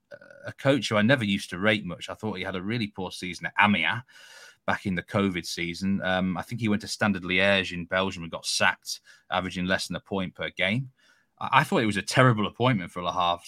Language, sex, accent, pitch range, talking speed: English, male, British, 95-125 Hz, 240 wpm